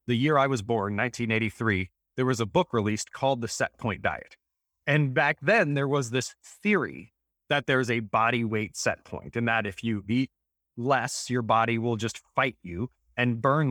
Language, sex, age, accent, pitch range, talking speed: English, male, 30-49, American, 110-140 Hz, 195 wpm